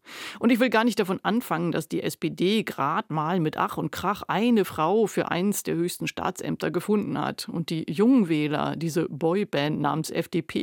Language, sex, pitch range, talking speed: German, female, 160-215 Hz, 180 wpm